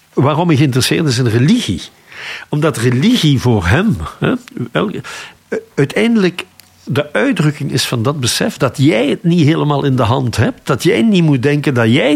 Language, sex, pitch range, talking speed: Dutch, male, 115-150 Hz, 175 wpm